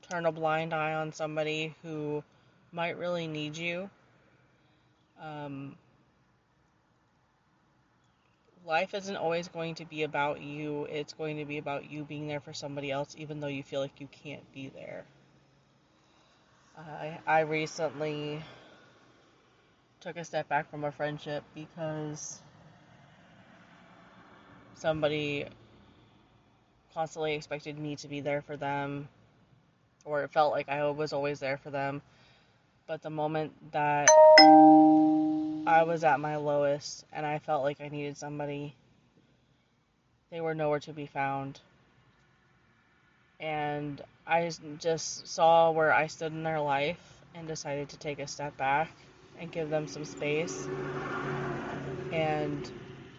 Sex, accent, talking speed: female, American, 130 wpm